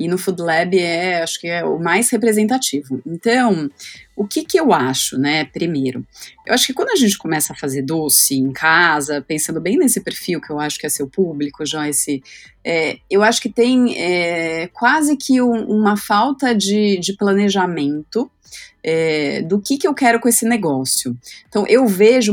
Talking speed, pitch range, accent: 175 wpm, 165-220 Hz, Brazilian